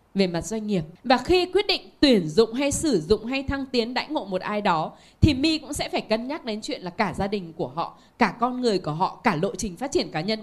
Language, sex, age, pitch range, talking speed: Vietnamese, female, 10-29, 195-275 Hz, 275 wpm